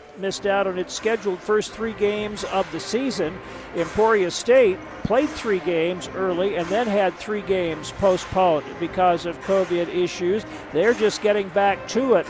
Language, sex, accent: English, male, American